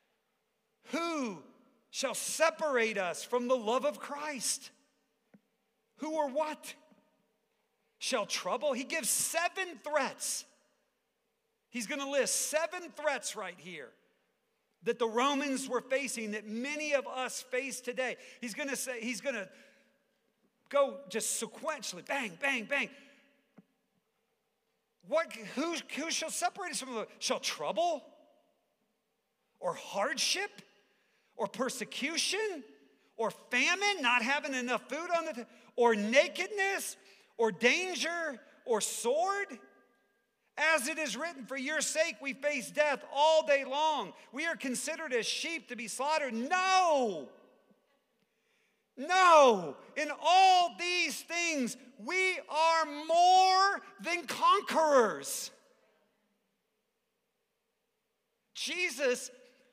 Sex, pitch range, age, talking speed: male, 240-320 Hz, 50-69, 115 wpm